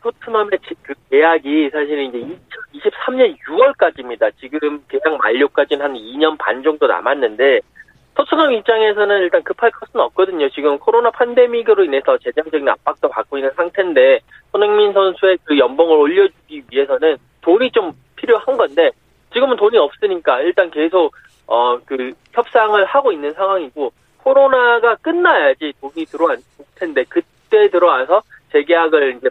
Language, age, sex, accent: Korean, 20-39, male, native